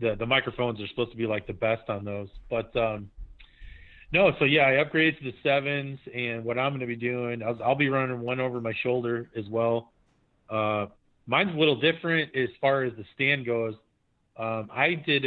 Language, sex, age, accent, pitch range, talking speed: English, male, 30-49, American, 115-140 Hz, 210 wpm